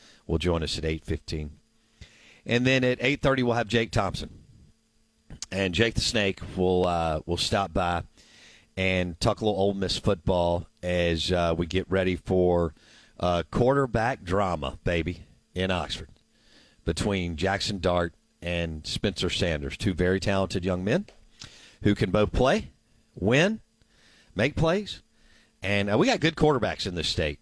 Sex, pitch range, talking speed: male, 85-110 Hz, 150 wpm